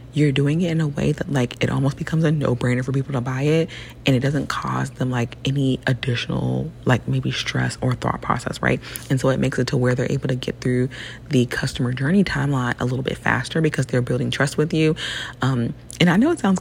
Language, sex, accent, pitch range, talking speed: English, female, American, 125-155 Hz, 235 wpm